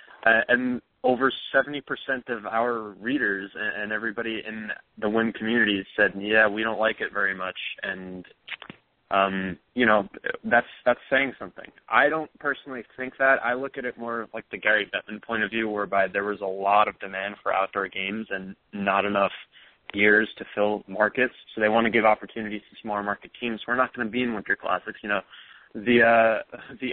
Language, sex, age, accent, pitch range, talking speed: English, male, 20-39, American, 100-120 Hz, 185 wpm